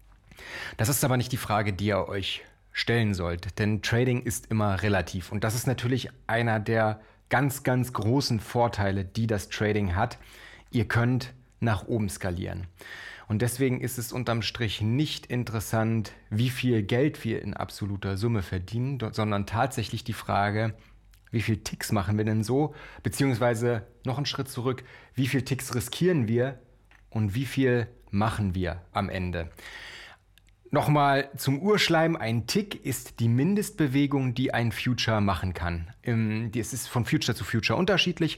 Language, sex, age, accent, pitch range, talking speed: German, male, 30-49, German, 105-130 Hz, 155 wpm